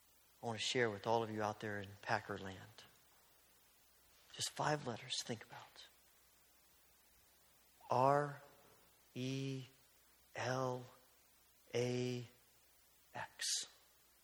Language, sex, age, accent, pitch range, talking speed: English, male, 40-59, American, 135-200 Hz, 80 wpm